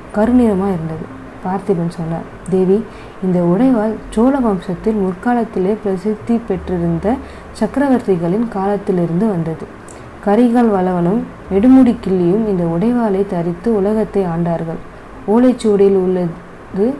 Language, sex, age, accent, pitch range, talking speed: Tamil, female, 20-39, native, 180-215 Hz, 85 wpm